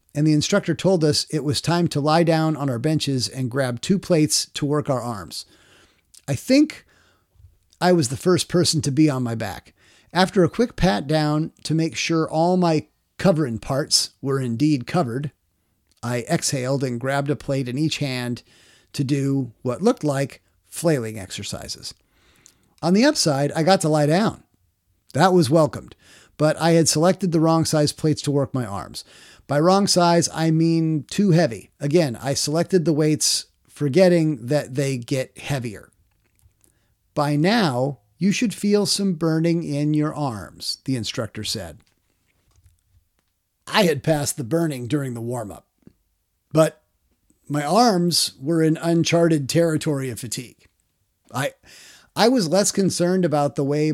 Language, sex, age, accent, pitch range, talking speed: English, male, 50-69, American, 115-165 Hz, 160 wpm